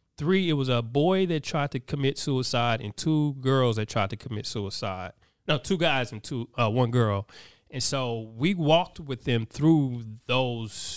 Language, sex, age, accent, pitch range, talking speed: English, male, 20-39, American, 125-160 Hz, 185 wpm